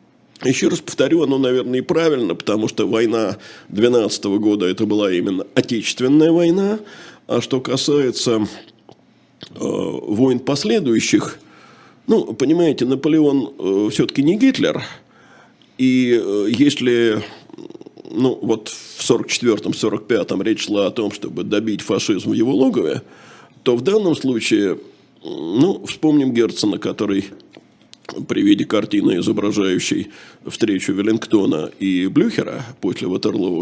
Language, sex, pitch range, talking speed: Russian, male, 110-170 Hz, 120 wpm